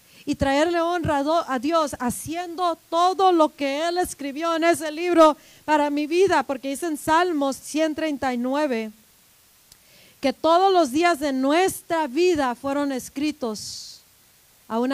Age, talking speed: 40-59, 130 wpm